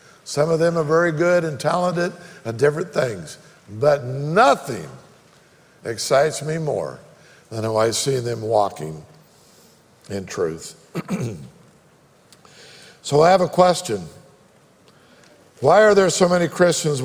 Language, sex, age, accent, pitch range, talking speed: English, male, 60-79, American, 140-185 Hz, 125 wpm